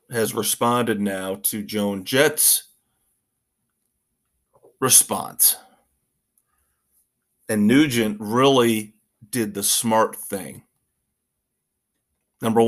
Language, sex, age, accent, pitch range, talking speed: English, male, 40-59, American, 105-120 Hz, 70 wpm